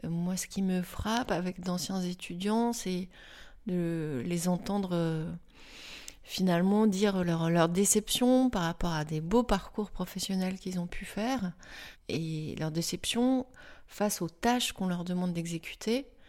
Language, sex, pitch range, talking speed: French, female, 175-215 Hz, 140 wpm